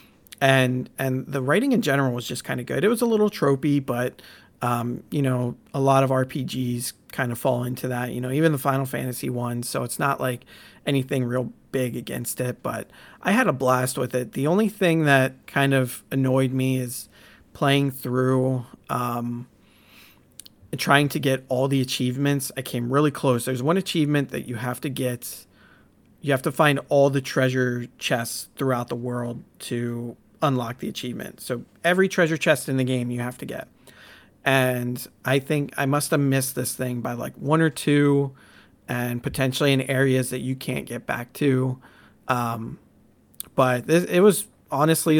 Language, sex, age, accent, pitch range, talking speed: English, male, 40-59, American, 125-140 Hz, 185 wpm